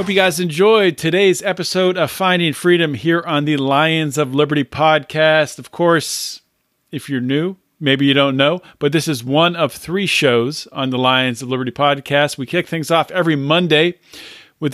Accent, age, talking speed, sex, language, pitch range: American, 40-59, 185 wpm, male, English, 135-180 Hz